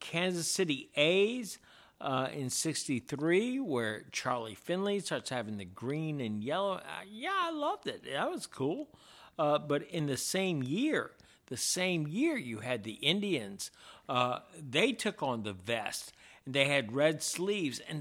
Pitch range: 110-155 Hz